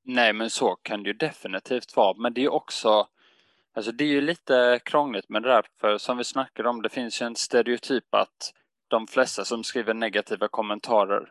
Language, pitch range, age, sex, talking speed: Swedish, 105-125 Hz, 20-39, male, 200 wpm